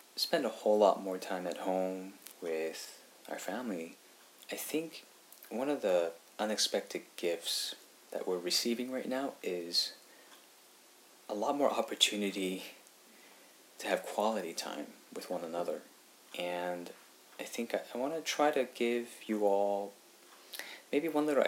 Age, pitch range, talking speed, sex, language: 30-49, 95-120 Hz, 135 wpm, male, English